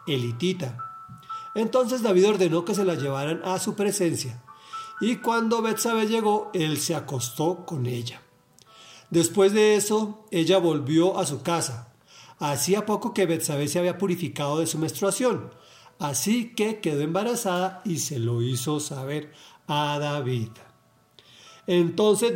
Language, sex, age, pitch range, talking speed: Spanish, male, 50-69, 145-200 Hz, 135 wpm